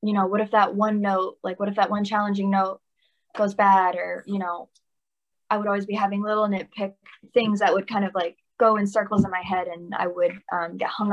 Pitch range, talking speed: 185-220 Hz, 235 wpm